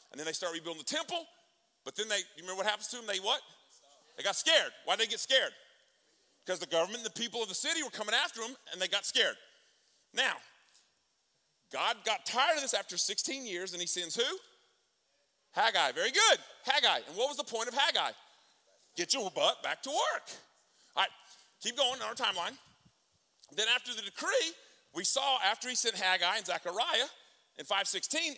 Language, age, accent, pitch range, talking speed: English, 40-59, American, 185-300 Hz, 200 wpm